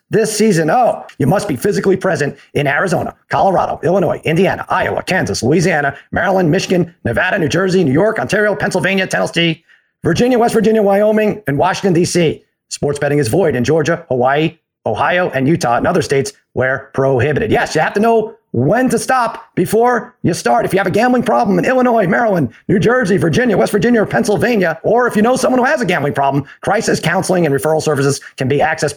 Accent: American